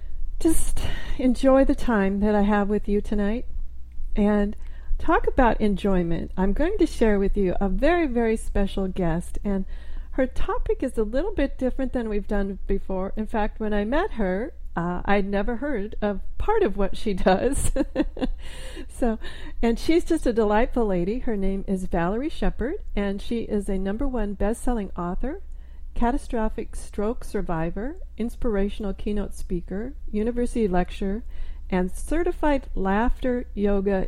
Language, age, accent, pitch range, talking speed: English, 40-59, American, 190-245 Hz, 150 wpm